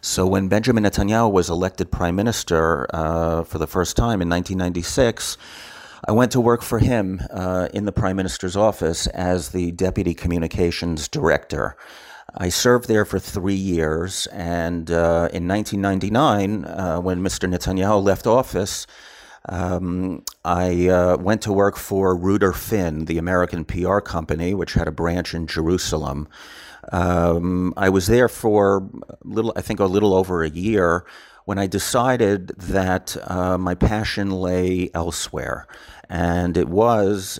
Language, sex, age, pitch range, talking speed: English, male, 40-59, 85-100 Hz, 150 wpm